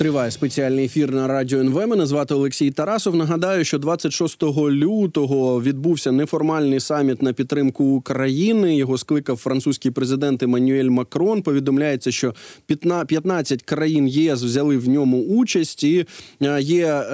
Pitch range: 135-165 Hz